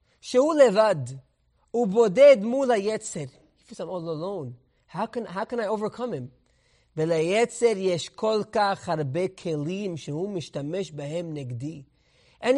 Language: English